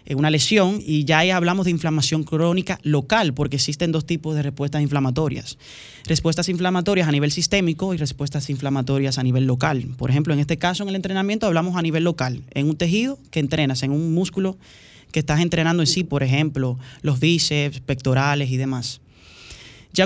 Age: 20-39